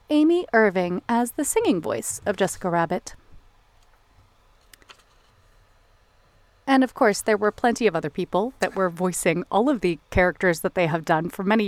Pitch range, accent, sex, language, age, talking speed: 180-235 Hz, American, female, English, 30-49, 160 wpm